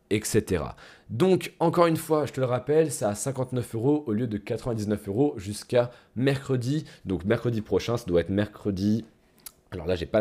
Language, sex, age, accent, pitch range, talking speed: French, male, 20-39, French, 105-135 Hz, 180 wpm